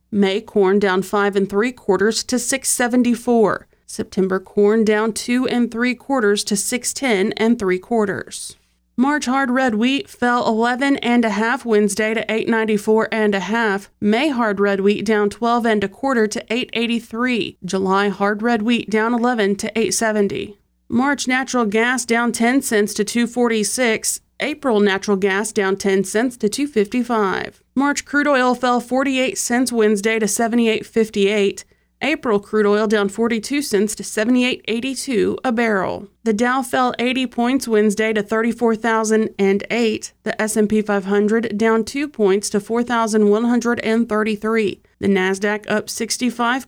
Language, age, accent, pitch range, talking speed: English, 30-49, American, 210-245 Hz, 140 wpm